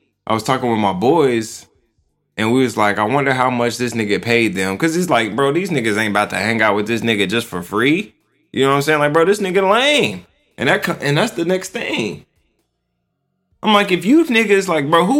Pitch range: 120-195 Hz